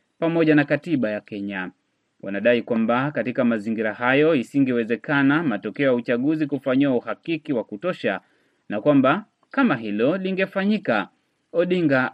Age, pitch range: 30-49, 125-165 Hz